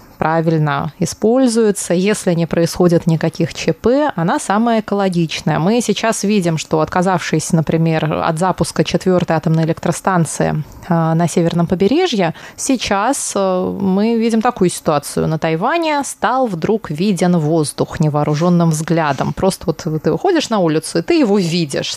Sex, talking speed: female, 130 wpm